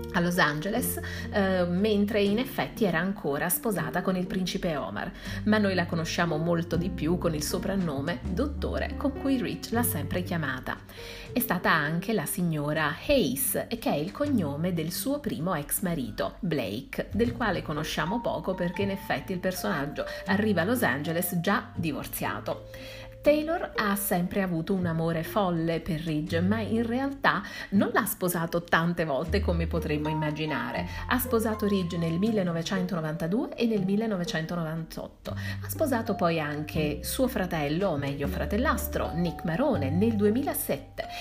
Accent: native